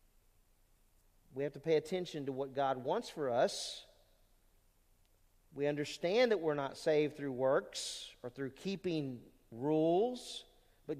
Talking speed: 130 wpm